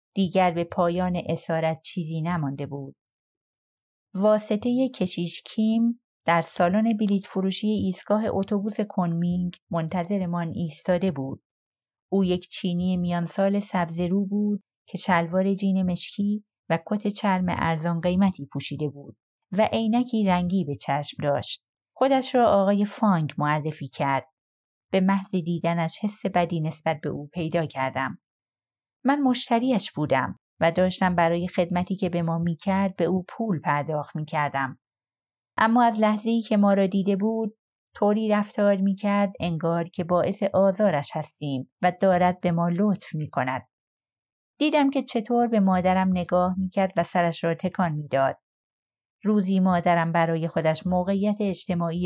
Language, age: Persian, 30-49